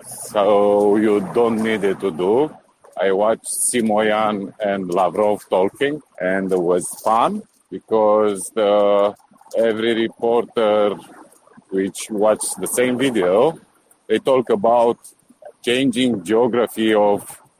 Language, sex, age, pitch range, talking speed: English, male, 50-69, 100-125 Hz, 110 wpm